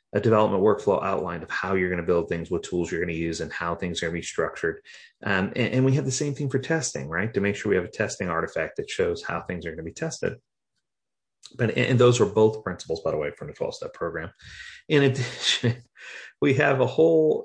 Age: 30-49